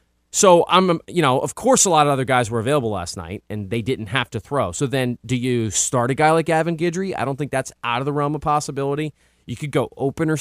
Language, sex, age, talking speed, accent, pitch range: English, male, 30-49, 260 wpm, American, 115-150 Hz